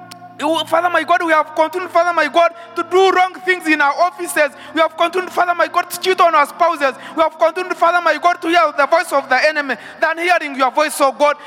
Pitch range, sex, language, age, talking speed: 275-340 Hz, male, English, 20-39, 240 wpm